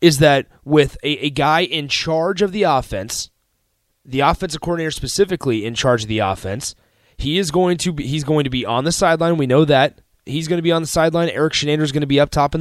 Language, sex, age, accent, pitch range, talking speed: English, male, 30-49, American, 115-160 Hz, 240 wpm